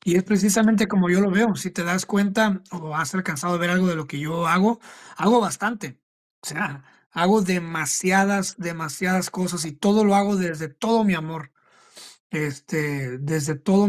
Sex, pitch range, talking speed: male, 165-195 Hz, 175 wpm